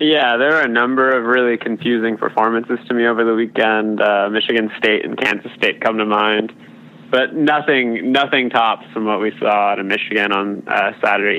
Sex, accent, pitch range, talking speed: male, American, 110-125 Hz, 195 wpm